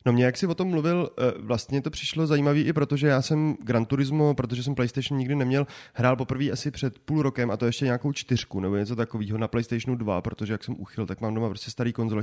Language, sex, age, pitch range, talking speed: Czech, male, 30-49, 115-140 Hz, 245 wpm